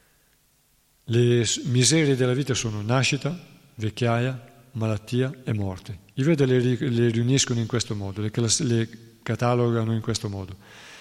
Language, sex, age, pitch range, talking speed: Italian, male, 40-59, 110-125 Hz, 120 wpm